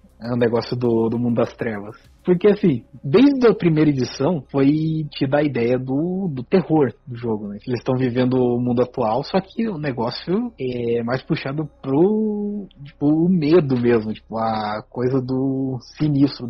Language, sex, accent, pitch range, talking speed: Portuguese, male, Brazilian, 130-185 Hz, 175 wpm